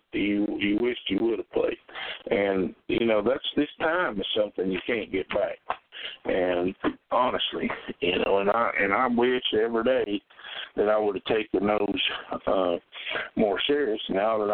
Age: 60-79